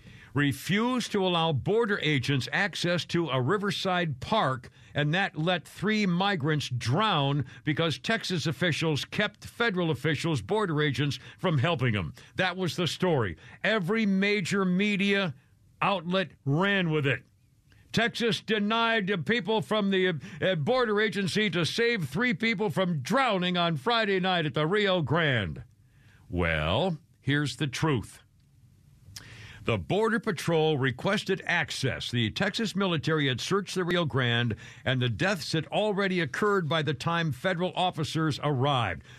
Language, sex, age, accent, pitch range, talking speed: English, male, 60-79, American, 140-200 Hz, 135 wpm